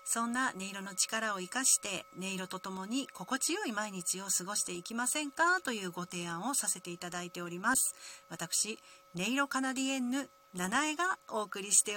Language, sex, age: Japanese, female, 40-59